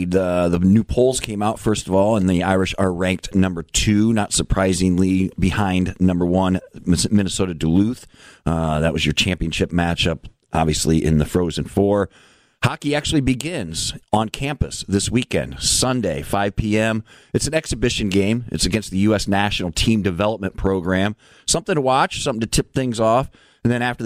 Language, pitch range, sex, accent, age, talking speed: English, 95-115 Hz, male, American, 40-59, 165 wpm